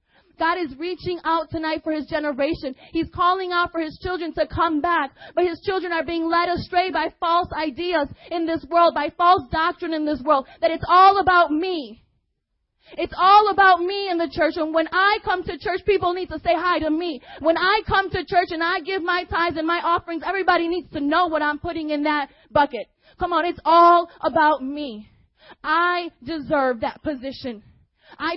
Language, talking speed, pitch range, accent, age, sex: English, 200 wpm, 265-335 Hz, American, 20-39, female